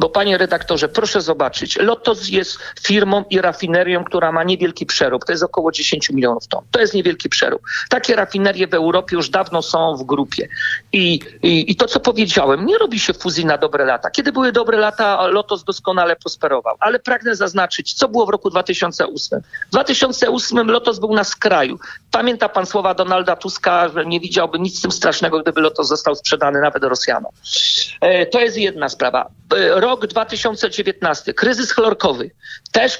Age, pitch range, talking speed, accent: 50-69, 175-235 Hz, 170 wpm, native